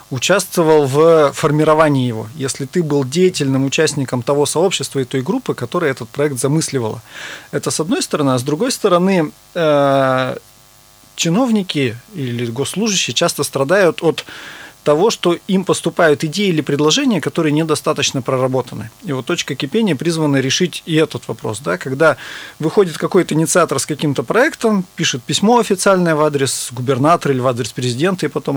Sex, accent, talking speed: male, native, 145 wpm